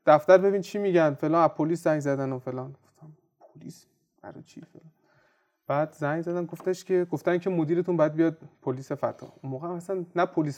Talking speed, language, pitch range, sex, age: 180 wpm, Persian, 135-170 Hz, male, 30-49